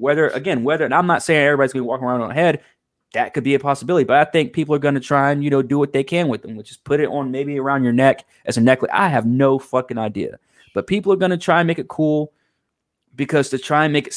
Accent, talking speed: American, 295 wpm